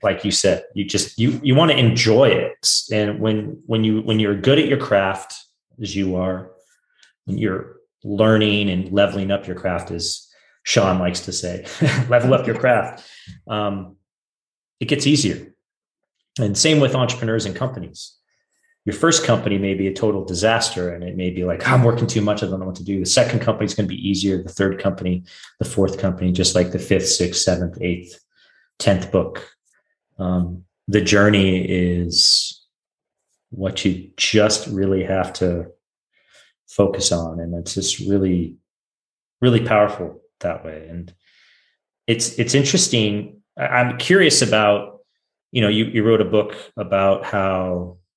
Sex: male